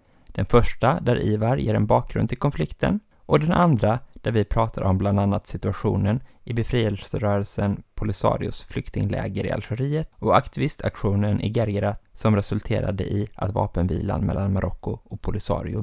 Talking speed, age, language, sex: 145 wpm, 20-39, Swedish, male